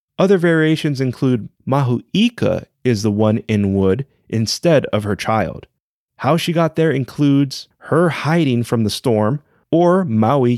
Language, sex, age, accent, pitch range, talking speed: English, male, 30-49, American, 105-155 Hz, 140 wpm